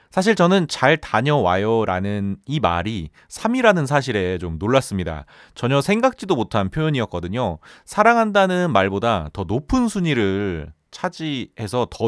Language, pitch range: Korean, 95-160 Hz